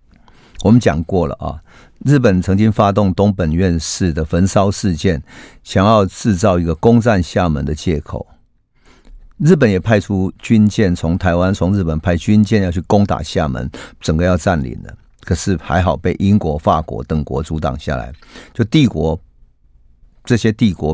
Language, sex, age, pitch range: Chinese, male, 50-69, 80-100 Hz